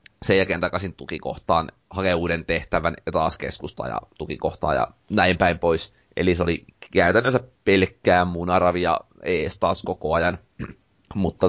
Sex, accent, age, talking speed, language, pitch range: male, native, 30-49, 140 wpm, Finnish, 85-100 Hz